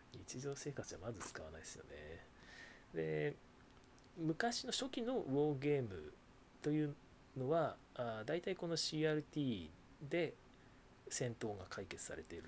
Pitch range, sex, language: 120-160 Hz, male, Japanese